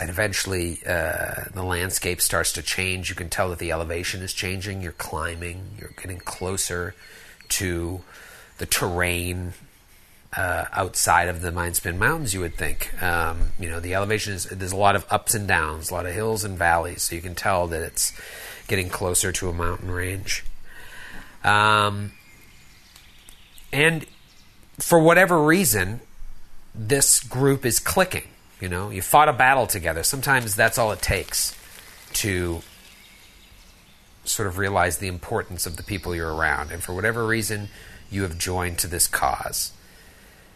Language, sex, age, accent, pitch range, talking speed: English, male, 40-59, American, 90-110 Hz, 155 wpm